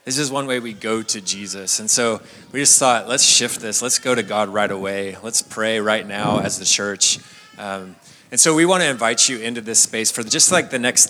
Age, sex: 30-49, male